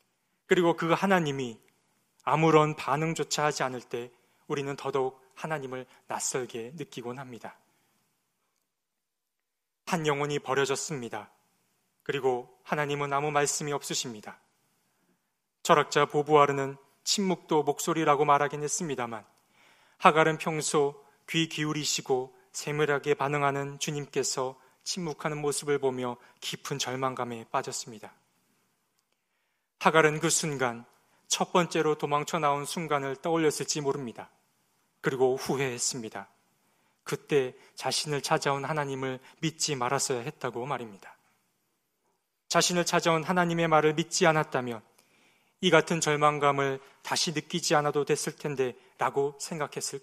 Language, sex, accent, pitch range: Korean, male, native, 130-160 Hz